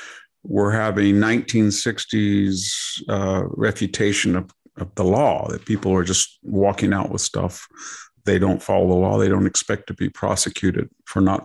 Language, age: English, 50-69